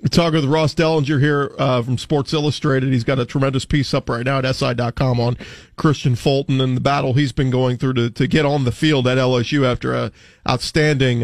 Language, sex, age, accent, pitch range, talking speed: English, male, 40-59, American, 135-170 Hz, 215 wpm